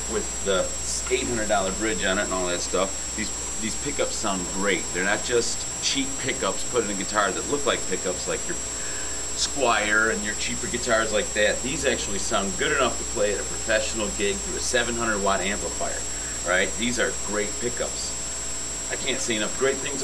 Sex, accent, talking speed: male, American, 190 wpm